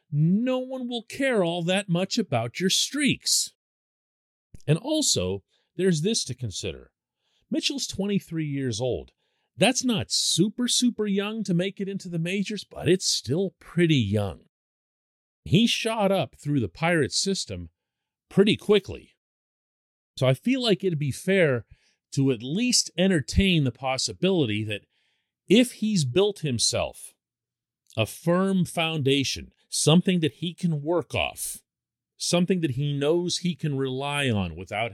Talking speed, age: 140 wpm, 40-59